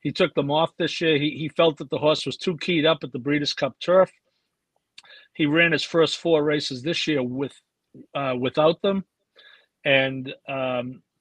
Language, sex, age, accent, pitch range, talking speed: English, male, 50-69, American, 135-160 Hz, 185 wpm